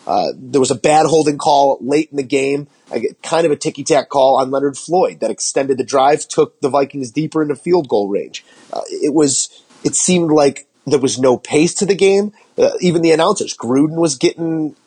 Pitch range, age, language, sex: 140-180 Hz, 30-49, English, male